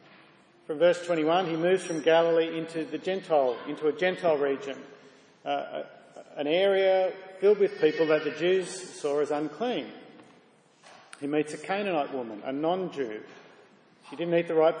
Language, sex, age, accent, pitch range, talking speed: English, male, 40-59, Australian, 150-175 Hz, 155 wpm